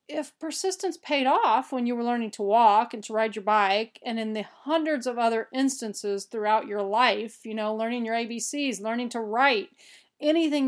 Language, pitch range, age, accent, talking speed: English, 210-270 Hz, 40-59, American, 190 wpm